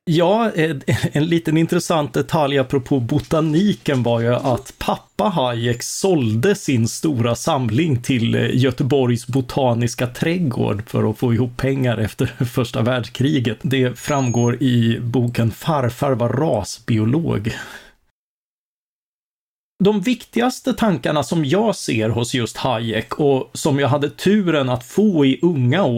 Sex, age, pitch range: male, 40-59, 120-165 Hz